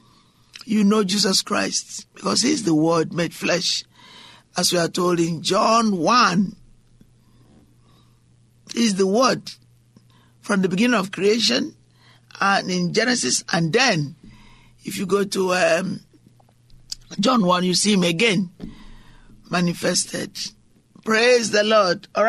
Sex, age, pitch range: male, 50-69, 170-215 Hz